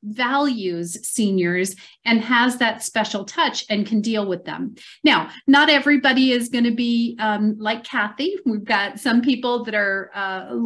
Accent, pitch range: American, 205-260 Hz